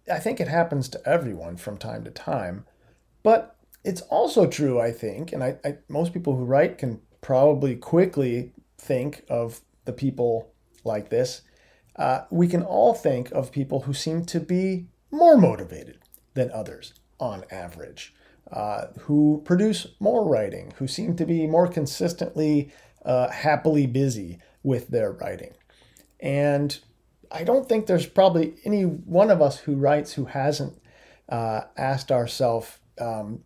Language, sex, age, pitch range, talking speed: English, male, 40-59, 120-165 Hz, 150 wpm